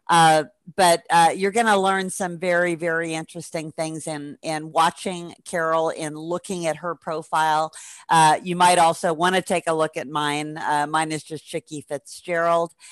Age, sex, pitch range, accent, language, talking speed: 50-69, female, 155-195 Hz, American, English, 175 wpm